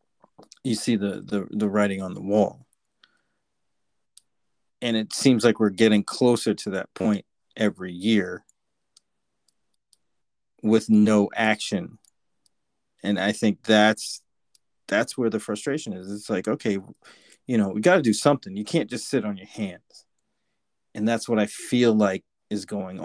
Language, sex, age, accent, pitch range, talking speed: English, male, 30-49, American, 100-115 Hz, 150 wpm